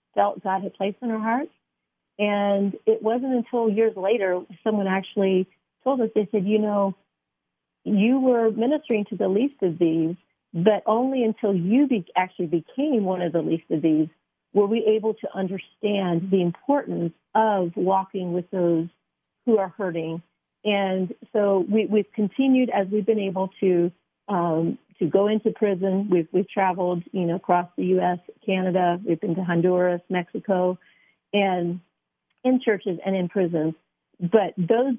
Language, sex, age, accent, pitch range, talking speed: English, female, 40-59, American, 180-220 Hz, 160 wpm